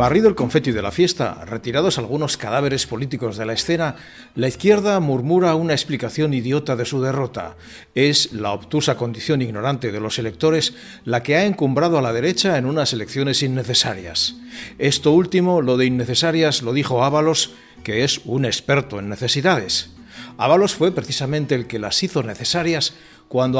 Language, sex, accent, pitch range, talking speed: Spanish, male, Spanish, 125-155 Hz, 165 wpm